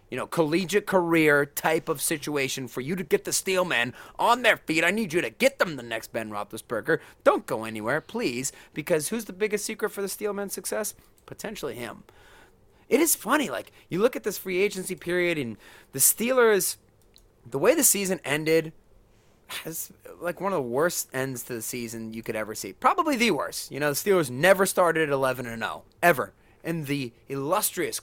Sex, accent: male, American